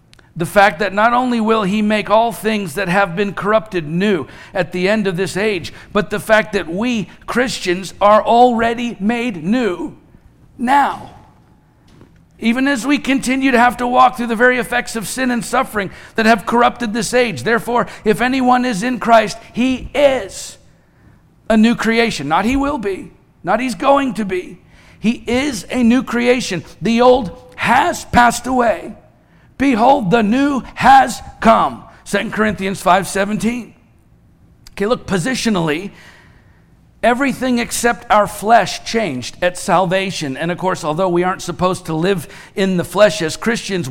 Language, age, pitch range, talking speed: English, 50-69, 180-235 Hz, 155 wpm